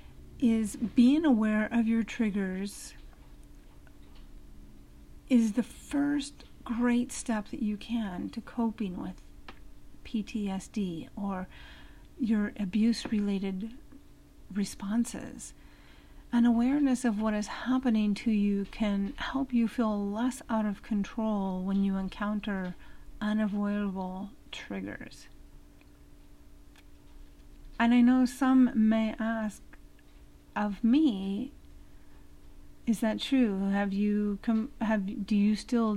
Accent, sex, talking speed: American, female, 105 wpm